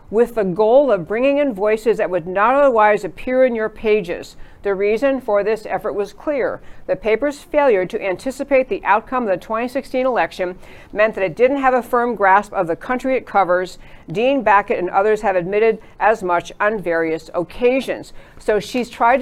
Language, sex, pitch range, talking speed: English, female, 185-245 Hz, 185 wpm